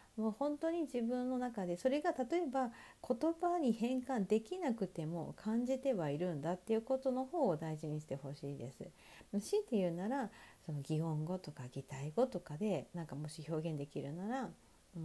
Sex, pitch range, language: female, 155-250 Hz, Japanese